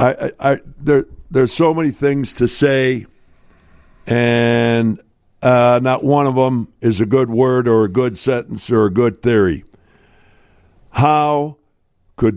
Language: English